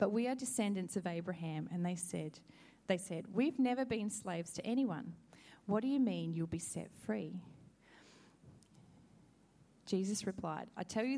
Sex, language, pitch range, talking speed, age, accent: female, English, 170-210 Hz, 160 wpm, 30-49, Australian